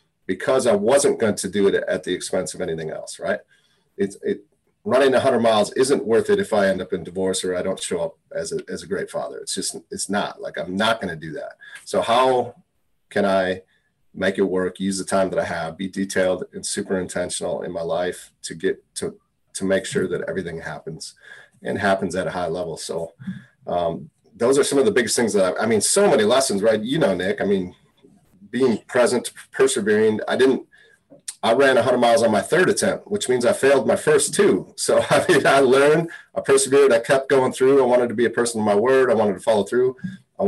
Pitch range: 110-165 Hz